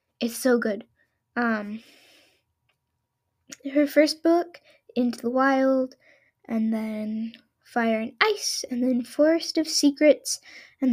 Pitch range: 230-285 Hz